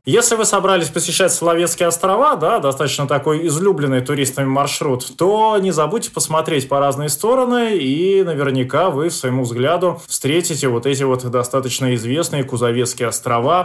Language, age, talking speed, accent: Russian, 20-39, 145 wpm, native